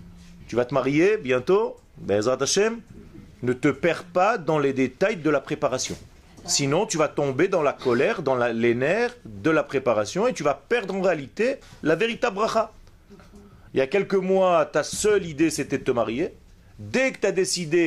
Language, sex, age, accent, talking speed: French, male, 40-59, French, 185 wpm